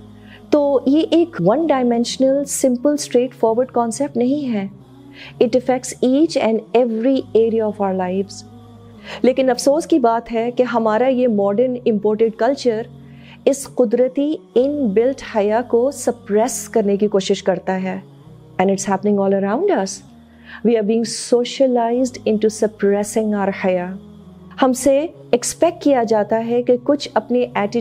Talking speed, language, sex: 140 wpm, Urdu, female